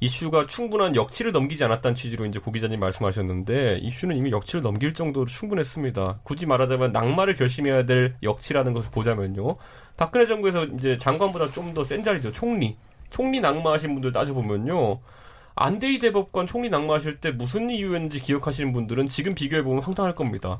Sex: male